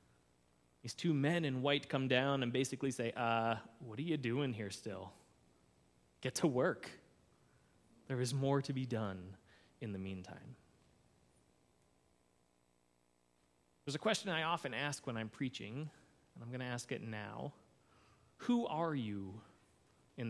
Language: English